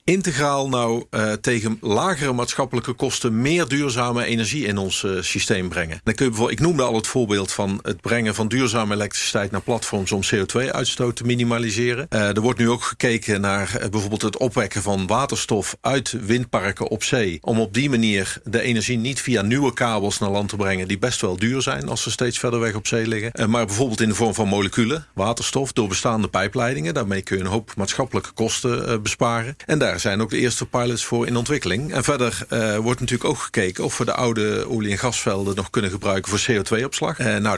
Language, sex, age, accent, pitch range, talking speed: Dutch, male, 50-69, Dutch, 105-125 Hz, 205 wpm